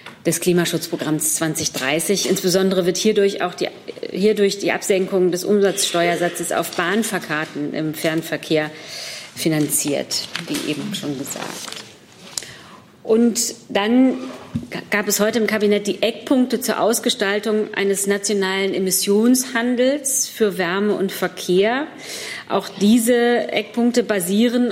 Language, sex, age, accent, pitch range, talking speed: German, female, 40-59, German, 180-215 Hz, 105 wpm